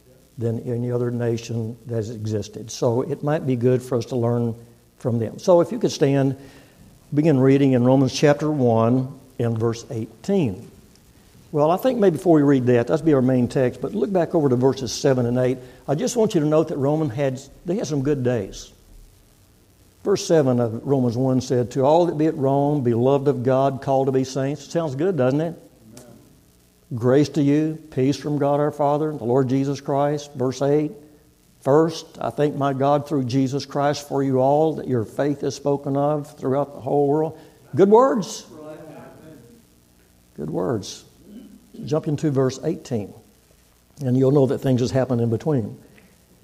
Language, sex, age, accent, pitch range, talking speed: English, male, 60-79, American, 120-150 Hz, 185 wpm